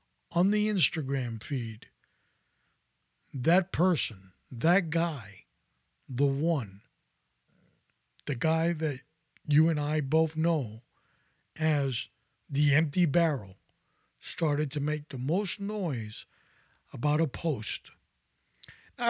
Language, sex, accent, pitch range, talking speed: English, male, American, 135-180 Hz, 100 wpm